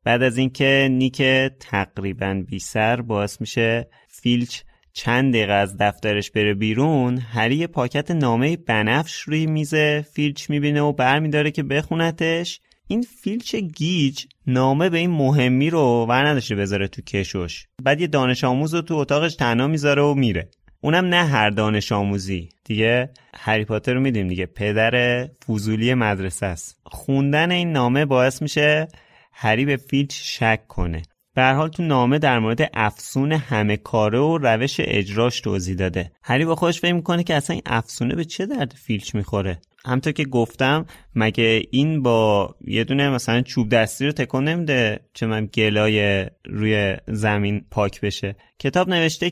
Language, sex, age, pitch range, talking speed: Persian, male, 30-49, 110-150 Hz, 155 wpm